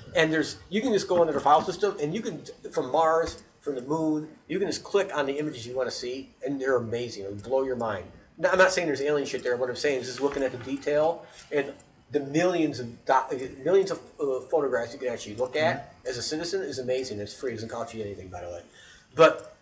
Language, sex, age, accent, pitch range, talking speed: English, male, 40-59, American, 130-200 Hz, 255 wpm